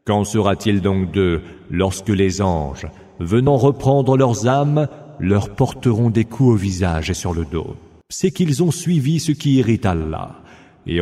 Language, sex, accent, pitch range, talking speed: English, male, French, 90-125 Hz, 165 wpm